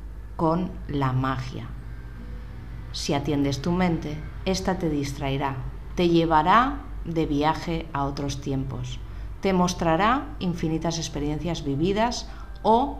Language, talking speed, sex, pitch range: Spanish, 105 wpm, female, 135-175 Hz